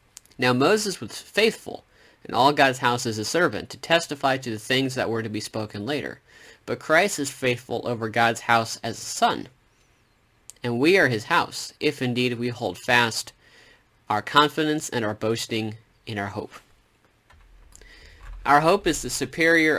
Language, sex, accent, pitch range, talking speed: English, male, American, 110-130 Hz, 165 wpm